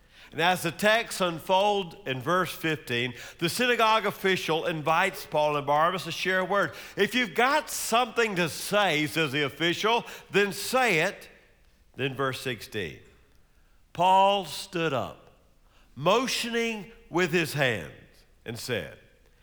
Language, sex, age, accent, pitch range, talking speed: English, male, 50-69, American, 140-210 Hz, 135 wpm